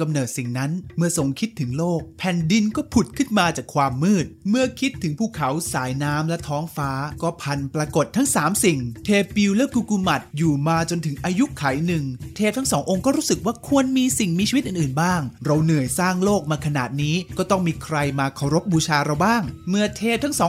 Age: 20-39